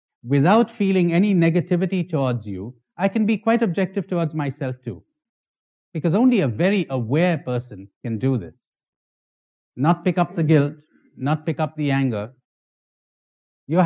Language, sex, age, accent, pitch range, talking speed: English, male, 50-69, Indian, 125-180 Hz, 145 wpm